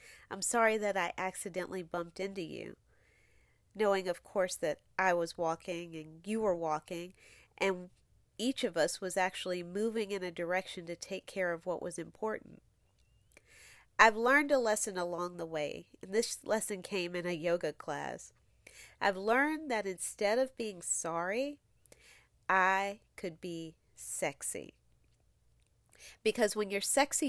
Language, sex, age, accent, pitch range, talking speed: English, female, 40-59, American, 170-205 Hz, 145 wpm